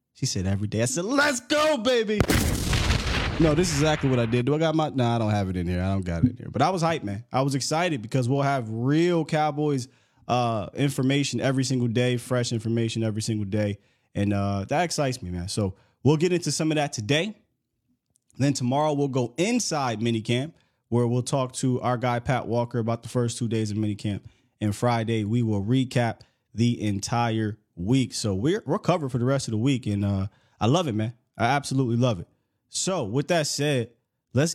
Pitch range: 115-140 Hz